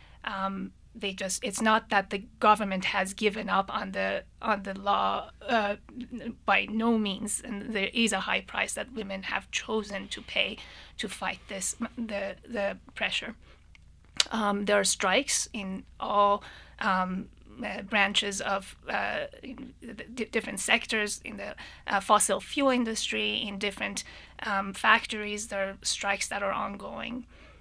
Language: English